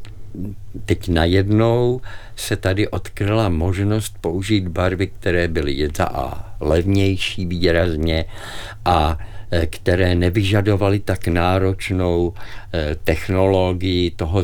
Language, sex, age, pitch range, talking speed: Czech, male, 50-69, 90-105 Hz, 85 wpm